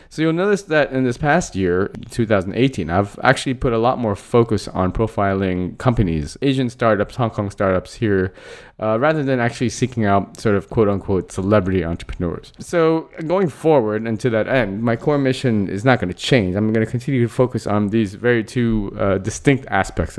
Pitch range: 100-125 Hz